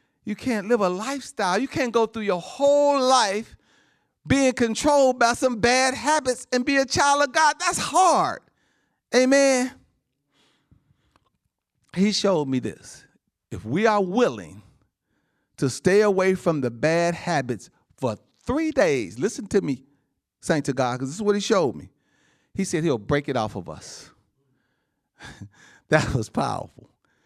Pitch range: 165-255 Hz